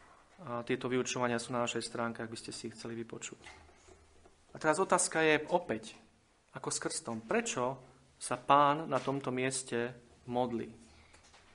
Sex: male